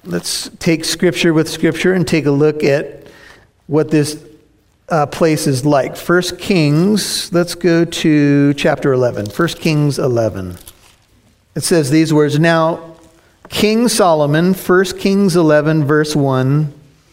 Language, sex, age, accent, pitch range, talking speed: English, male, 50-69, American, 150-185 Hz, 135 wpm